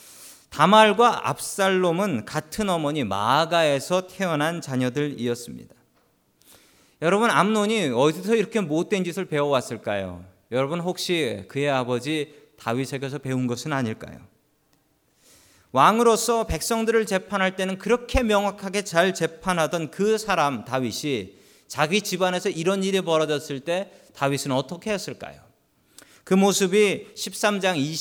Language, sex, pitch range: Korean, male, 135-195 Hz